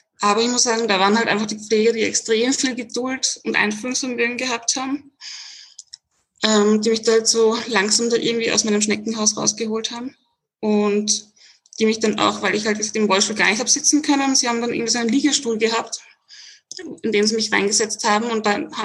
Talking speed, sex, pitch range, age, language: 200 wpm, female, 210-250 Hz, 20-39, German